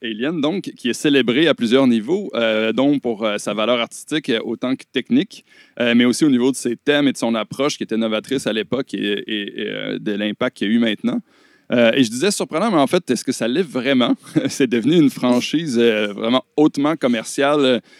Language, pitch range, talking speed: French, 115-140 Hz, 220 wpm